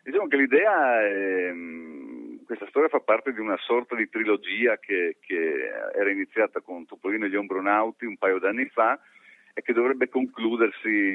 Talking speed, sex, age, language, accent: 160 wpm, male, 40-59, Italian, native